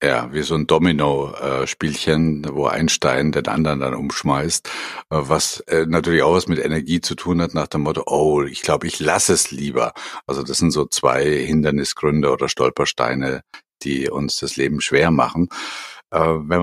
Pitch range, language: 80-100 Hz, German